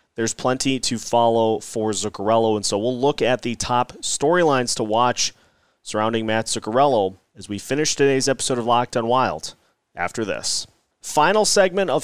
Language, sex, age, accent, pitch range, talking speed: English, male, 30-49, American, 110-135 Hz, 165 wpm